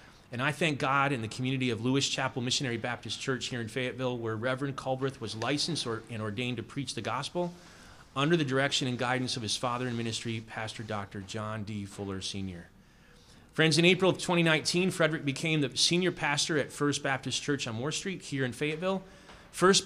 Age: 30-49